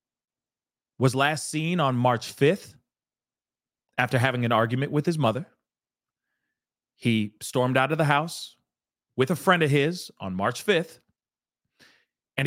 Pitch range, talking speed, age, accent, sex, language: 125-170 Hz, 135 wpm, 40-59, American, male, English